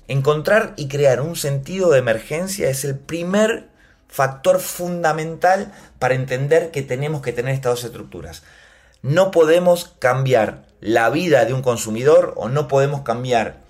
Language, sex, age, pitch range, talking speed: Spanish, male, 30-49, 125-180 Hz, 145 wpm